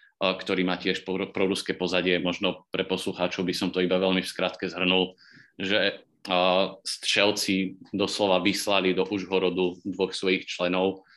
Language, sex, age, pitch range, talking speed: Slovak, male, 30-49, 90-100 Hz, 135 wpm